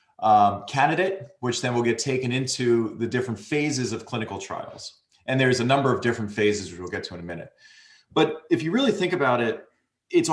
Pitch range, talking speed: 115-150 Hz, 210 wpm